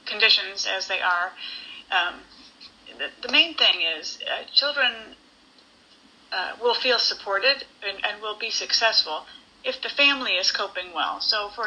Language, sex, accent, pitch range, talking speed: Italian, female, American, 195-265 Hz, 150 wpm